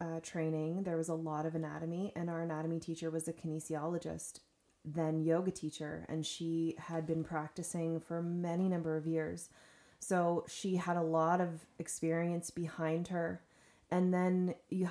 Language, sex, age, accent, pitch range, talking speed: English, female, 20-39, American, 155-175 Hz, 160 wpm